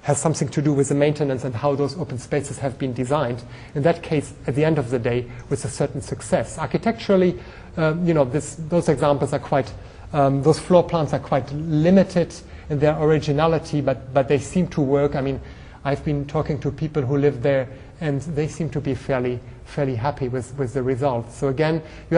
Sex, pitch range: male, 135-180 Hz